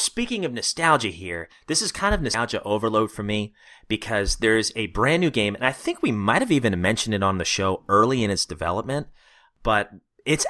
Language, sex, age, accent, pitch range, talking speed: English, male, 30-49, American, 110-155 Hz, 210 wpm